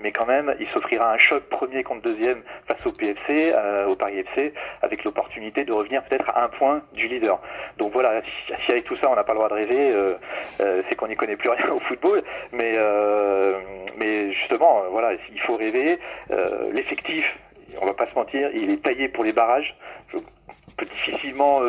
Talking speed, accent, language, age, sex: 210 wpm, French, French, 40-59, male